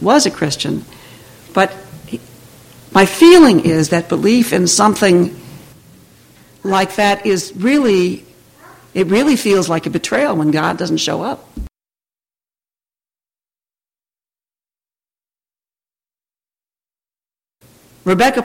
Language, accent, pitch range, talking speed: English, American, 155-195 Hz, 90 wpm